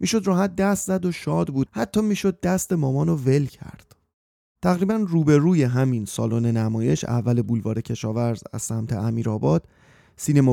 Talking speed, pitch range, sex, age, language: 150 wpm, 120-165 Hz, male, 30-49, Persian